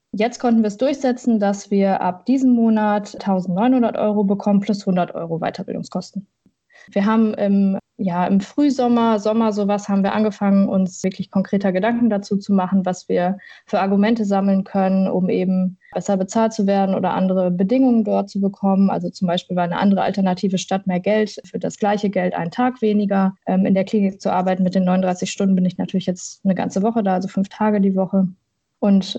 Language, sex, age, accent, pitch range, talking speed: German, female, 20-39, German, 190-210 Hz, 190 wpm